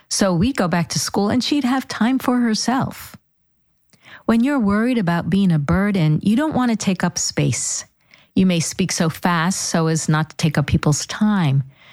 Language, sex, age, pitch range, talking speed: English, female, 50-69, 155-210 Hz, 195 wpm